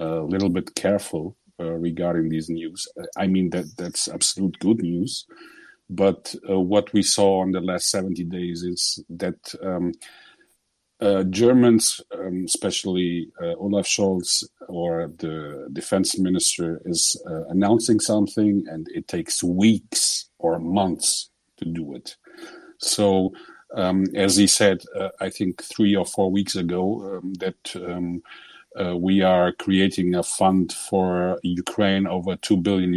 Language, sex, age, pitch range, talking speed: English, male, 50-69, 90-105 Hz, 145 wpm